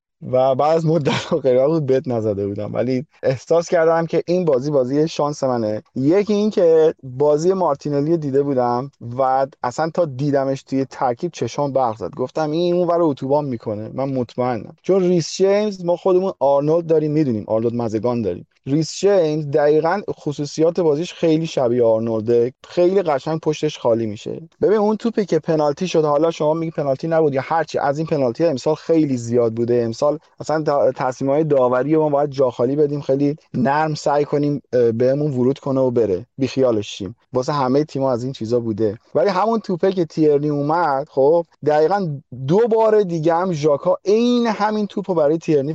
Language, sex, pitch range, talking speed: Persian, male, 130-165 Hz, 175 wpm